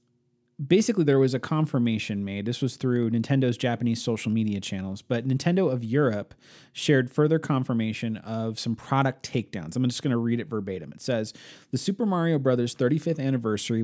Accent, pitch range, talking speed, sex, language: American, 110-135 Hz, 175 wpm, male, English